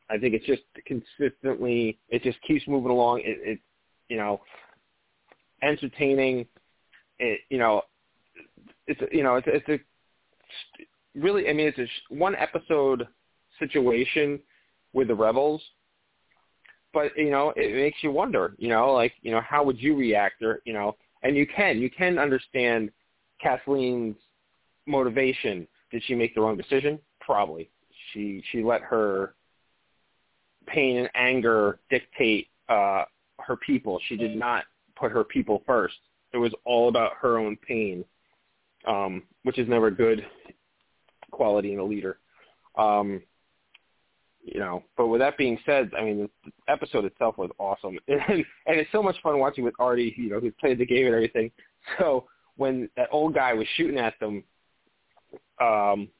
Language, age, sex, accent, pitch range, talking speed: English, 20-39, male, American, 110-145 Hz, 155 wpm